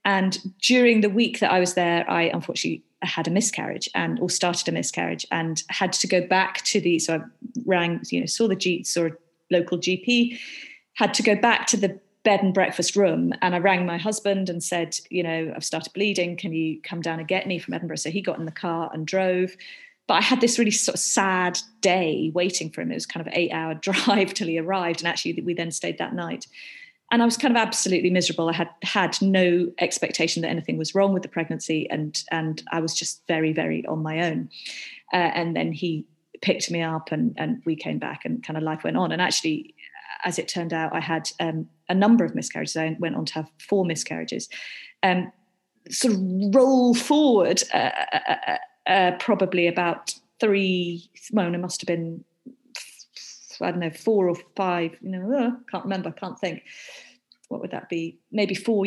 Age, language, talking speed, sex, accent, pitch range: 30-49, English, 215 wpm, female, British, 165-205 Hz